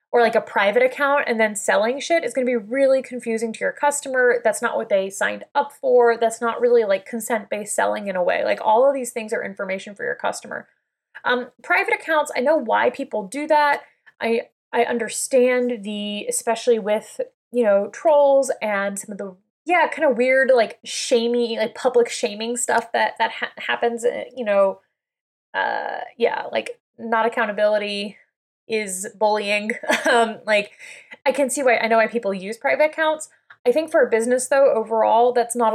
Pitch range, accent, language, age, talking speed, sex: 220-295 Hz, American, English, 20-39, 185 wpm, female